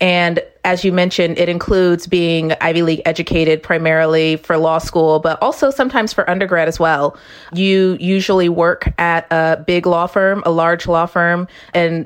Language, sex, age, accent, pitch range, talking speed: English, female, 30-49, American, 165-185 Hz, 170 wpm